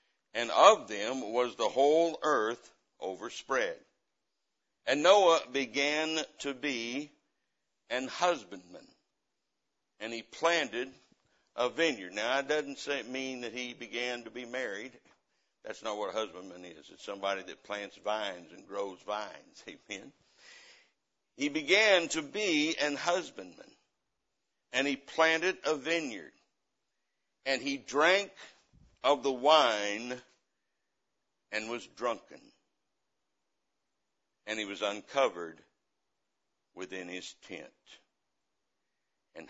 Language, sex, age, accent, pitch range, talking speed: English, male, 60-79, American, 110-145 Hz, 110 wpm